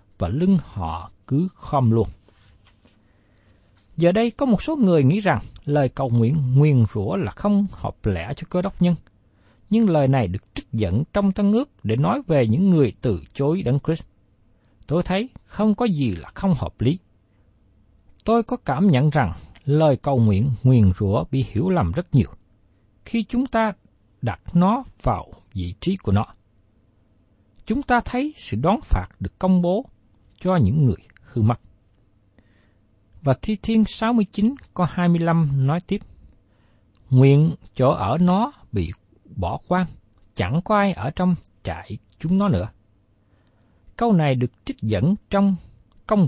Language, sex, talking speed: Vietnamese, male, 165 wpm